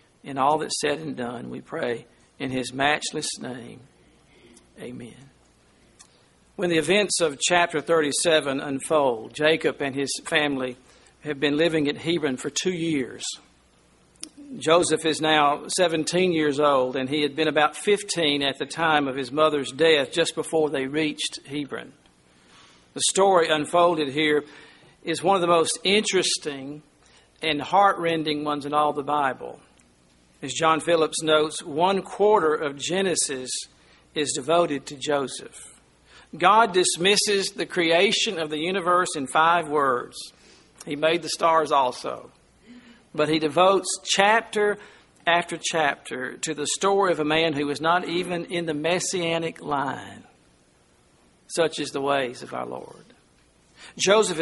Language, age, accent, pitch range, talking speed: English, 50-69, American, 140-170 Hz, 140 wpm